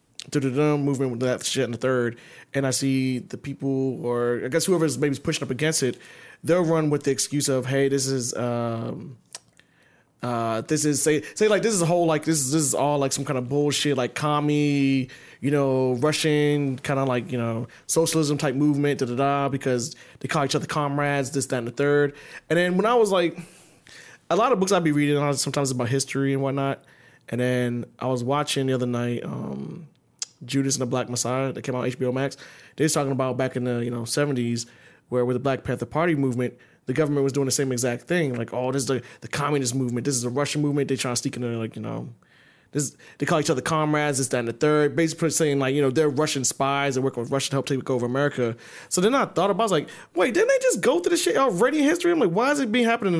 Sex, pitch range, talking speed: male, 130-155 Hz, 245 wpm